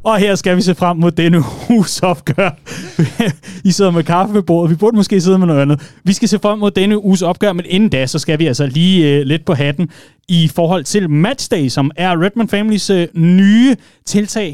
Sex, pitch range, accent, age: male, 140-195 Hz, native, 30-49